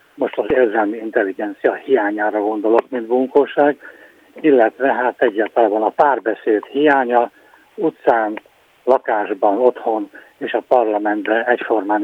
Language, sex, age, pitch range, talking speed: Hungarian, male, 60-79, 110-140 Hz, 105 wpm